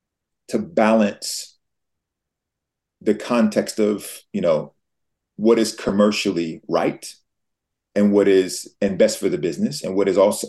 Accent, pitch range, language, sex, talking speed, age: American, 95-110 Hz, English, male, 130 wpm, 30-49